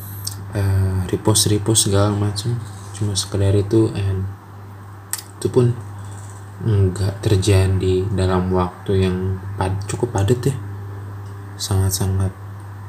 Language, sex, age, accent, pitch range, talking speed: Indonesian, male, 20-39, native, 100-110 Hz, 100 wpm